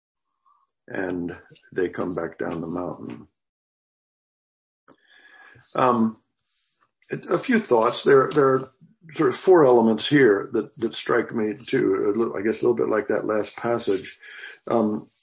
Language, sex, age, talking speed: English, male, 50-69, 125 wpm